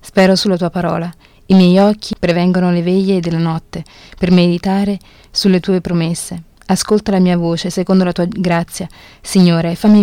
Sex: female